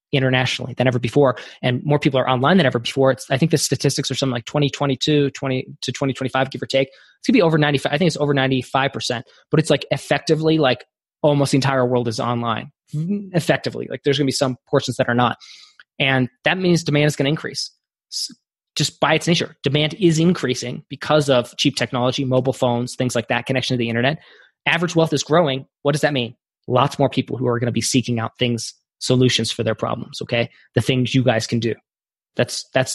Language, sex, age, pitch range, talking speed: English, male, 20-39, 125-155 Hz, 215 wpm